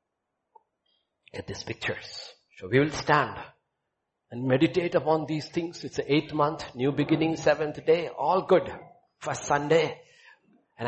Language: English